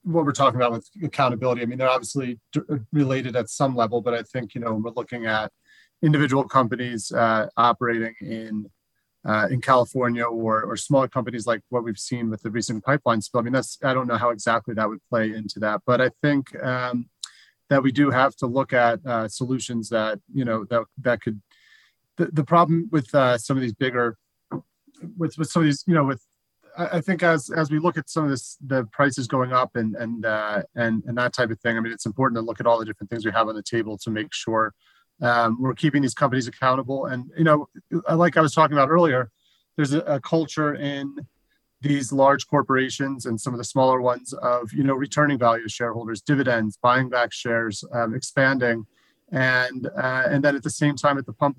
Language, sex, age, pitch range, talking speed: English, male, 30-49, 115-140 Hz, 220 wpm